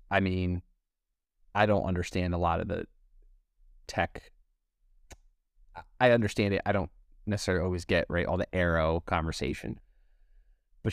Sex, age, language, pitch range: male, 20-39, English, 85-110 Hz